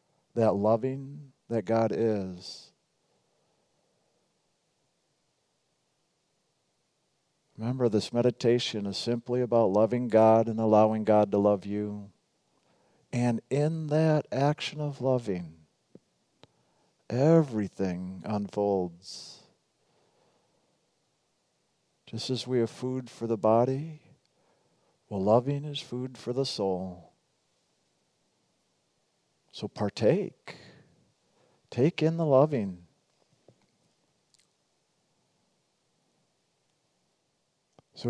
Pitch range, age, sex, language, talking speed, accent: 105-130 Hz, 50-69, male, English, 75 wpm, American